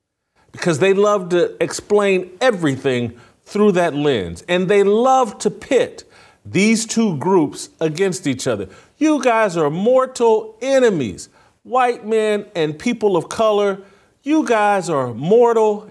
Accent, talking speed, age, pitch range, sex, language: American, 130 wpm, 40-59, 140-220 Hz, male, English